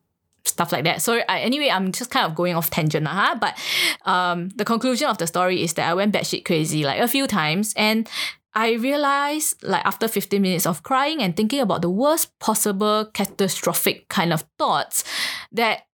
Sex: female